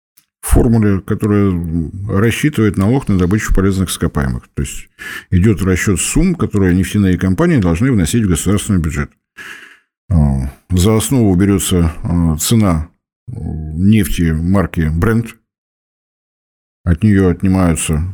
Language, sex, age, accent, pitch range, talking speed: Russian, male, 50-69, native, 85-110 Hz, 105 wpm